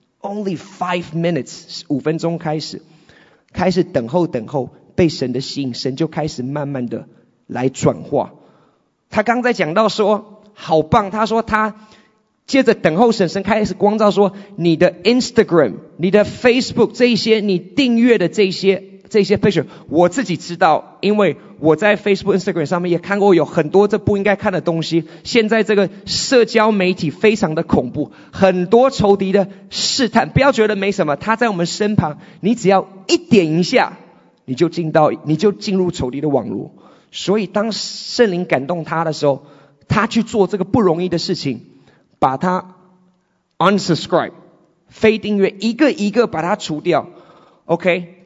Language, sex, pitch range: English, male, 165-210 Hz